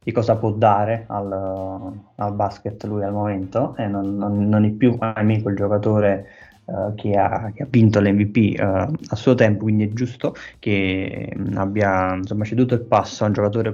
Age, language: 20-39, Italian